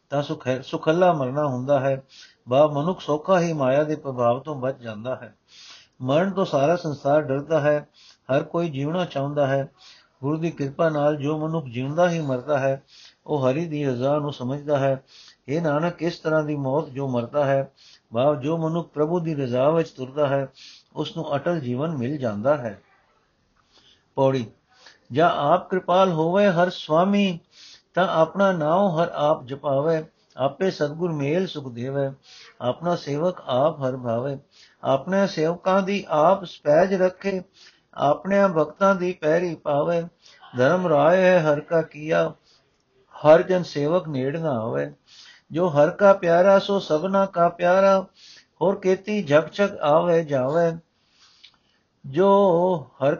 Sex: male